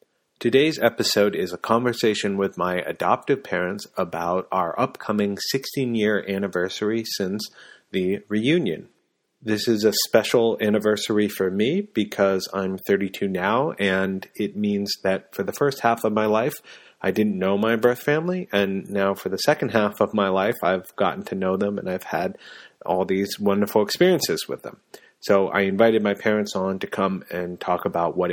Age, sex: 30-49, male